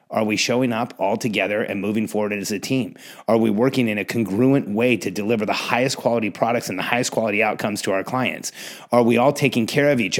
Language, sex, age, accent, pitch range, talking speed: English, male, 30-49, American, 115-155 Hz, 235 wpm